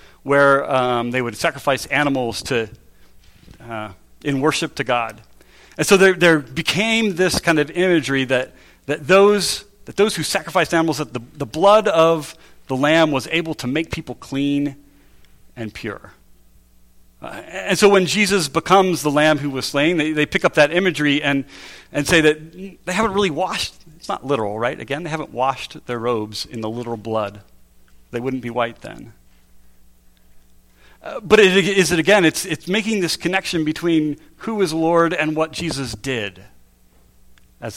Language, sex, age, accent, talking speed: English, male, 40-59, American, 170 wpm